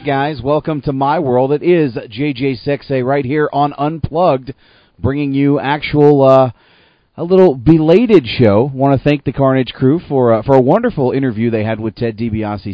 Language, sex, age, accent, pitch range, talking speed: English, male, 30-49, American, 110-135 Hz, 180 wpm